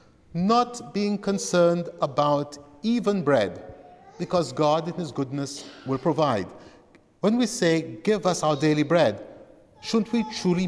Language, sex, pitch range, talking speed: English, male, 150-205 Hz, 135 wpm